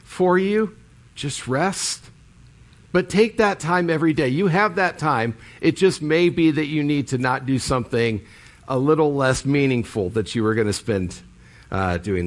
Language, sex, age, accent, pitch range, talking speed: English, male, 50-69, American, 130-175 Hz, 175 wpm